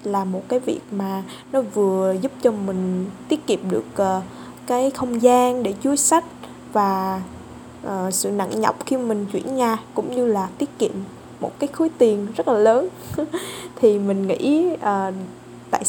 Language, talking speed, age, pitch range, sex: Vietnamese, 160 wpm, 10-29, 195-255 Hz, female